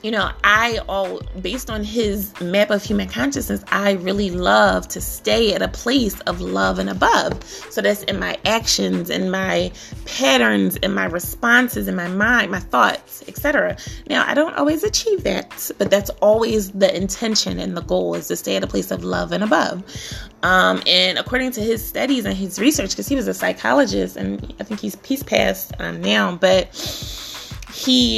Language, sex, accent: English, female, American